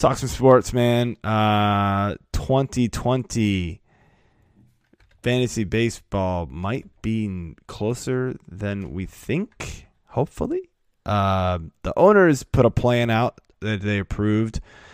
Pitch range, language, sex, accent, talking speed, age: 90-115 Hz, English, male, American, 105 wpm, 20-39